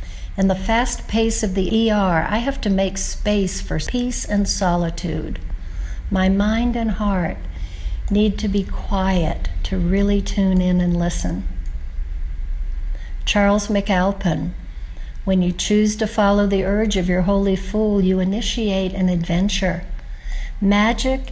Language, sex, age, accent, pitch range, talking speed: English, female, 60-79, American, 170-205 Hz, 135 wpm